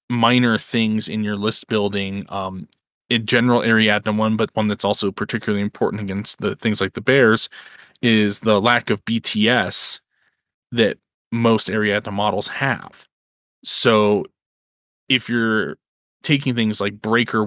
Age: 20-39